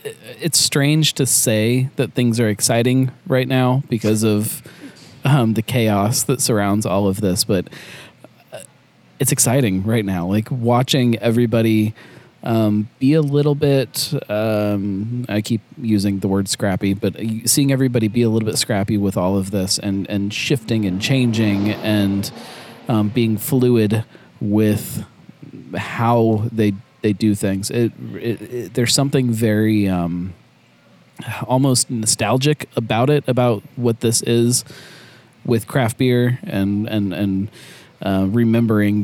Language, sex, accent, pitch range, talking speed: English, male, American, 100-125 Hz, 140 wpm